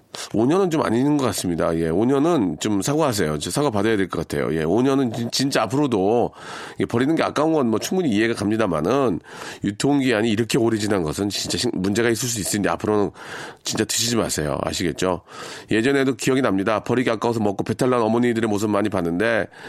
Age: 40-59